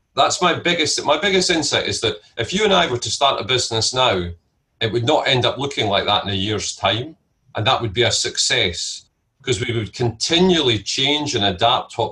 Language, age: English, 40-59